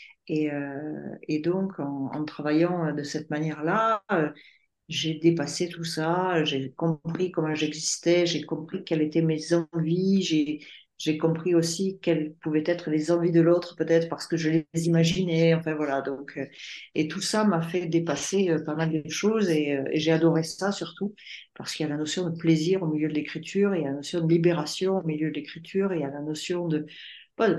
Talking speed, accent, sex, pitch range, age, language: 210 wpm, French, female, 150-175 Hz, 50-69, French